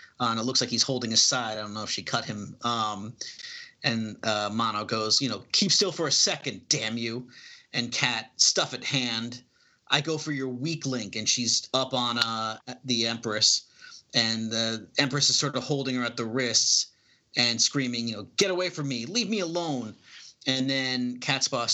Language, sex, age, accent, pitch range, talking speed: English, male, 30-49, American, 115-145 Hz, 205 wpm